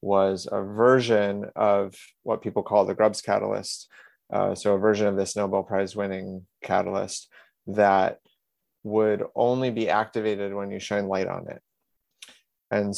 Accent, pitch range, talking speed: American, 100-110 Hz, 150 wpm